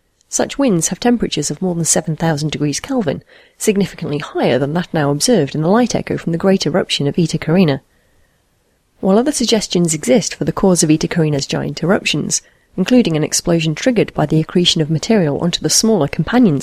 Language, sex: English, female